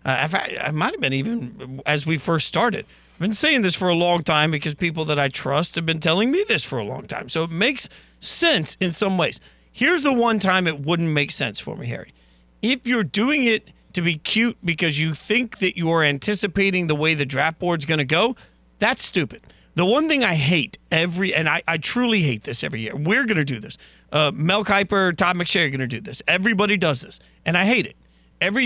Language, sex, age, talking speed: English, male, 40-59, 230 wpm